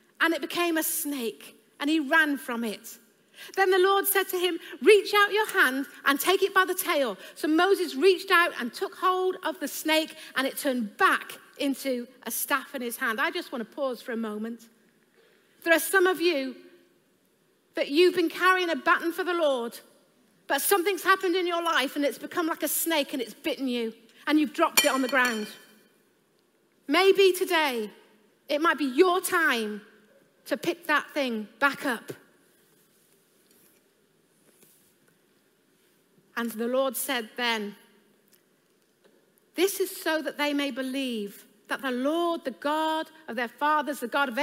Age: 40-59